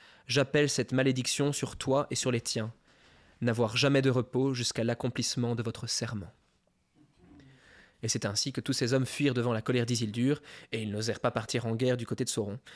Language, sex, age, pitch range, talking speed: French, male, 20-39, 115-140 Hz, 195 wpm